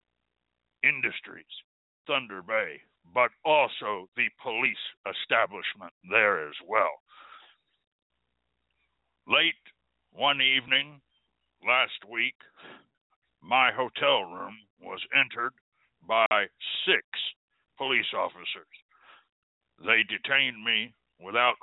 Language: English